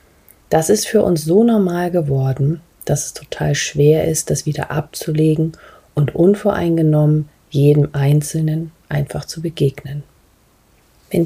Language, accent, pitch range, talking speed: German, German, 145-170 Hz, 125 wpm